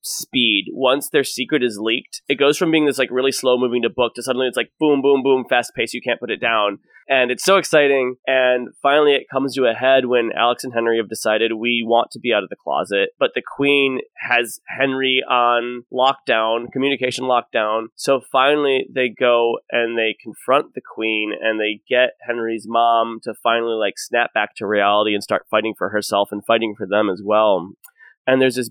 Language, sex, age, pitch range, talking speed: English, male, 20-39, 115-140 Hz, 210 wpm